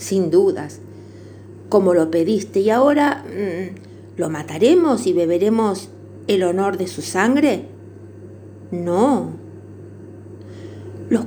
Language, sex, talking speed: Spanish, female, 95 wpm